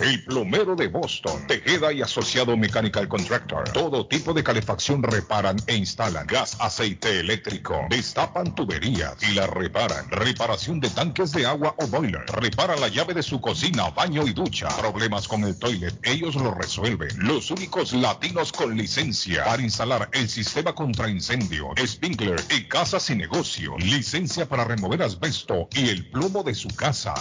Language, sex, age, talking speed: Spanish, male, 50-69, 160 wpm